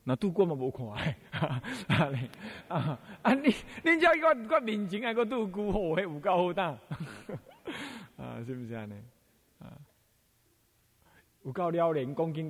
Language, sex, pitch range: Chinese, male, 130-210 Hz